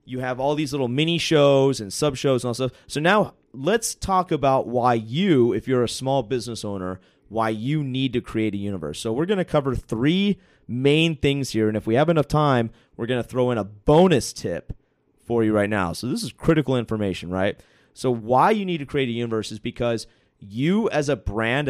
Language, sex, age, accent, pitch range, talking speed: English, male, 30-49, American, 110-145 Hz, 225 wpm